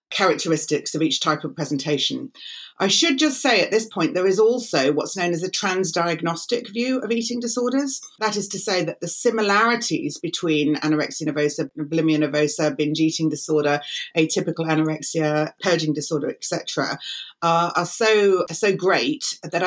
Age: 40-59